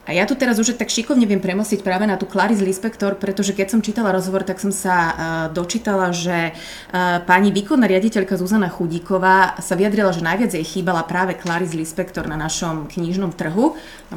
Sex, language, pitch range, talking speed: female, Slovak, 170-210 Hz, 190 wpm